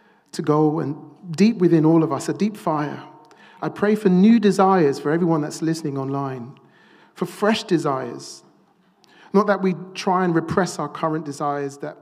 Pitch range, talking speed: 145-185 Hz, 170 wpm